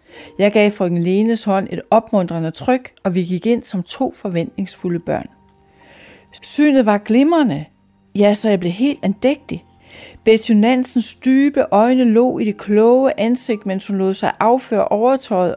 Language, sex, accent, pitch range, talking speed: Danish, female, native, 185-240 Hz, 150 wpm